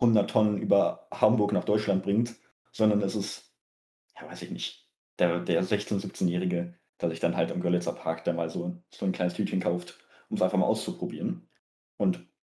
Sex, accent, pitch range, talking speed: male, German, 90-105 Hz, 185 wpm